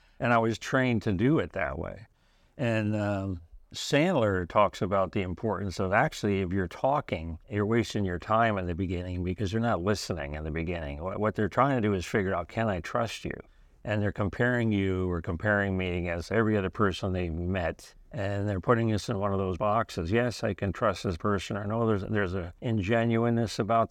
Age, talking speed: 50-69, 205 wpm